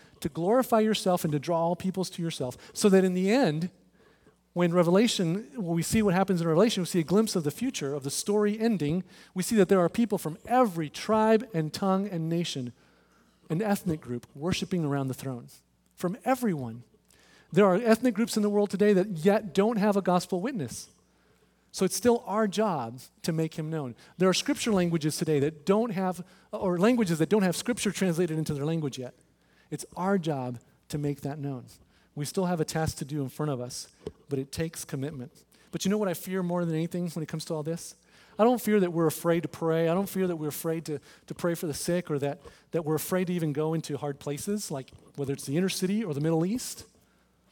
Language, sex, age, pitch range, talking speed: English, male, 40-59, 145-195 Hz, 225 wpm